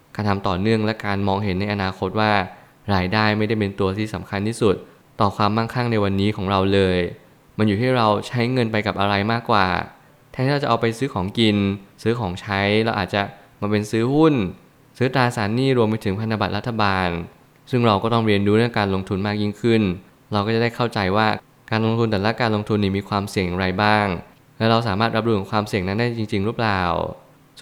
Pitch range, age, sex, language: 100-120 Hz, 20-39, male, Thai